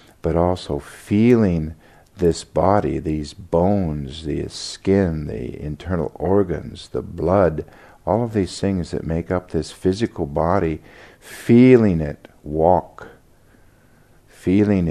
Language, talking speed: English, 115 wpm